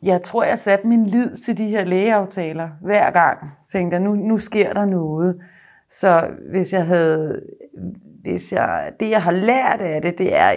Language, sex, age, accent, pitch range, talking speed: Danish, female, 30-49, native, 140-185 Hz, 185 wpm